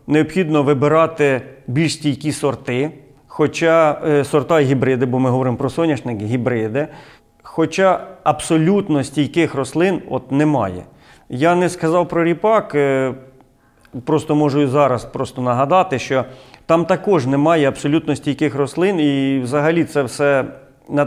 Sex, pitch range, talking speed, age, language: male, 130-155 Hz, 120 wpm, 40-59, Ukrainian